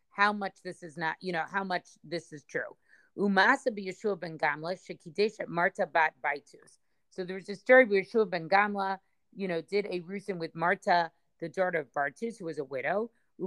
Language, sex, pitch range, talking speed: English, female, 170-205 Hz, 155 wpm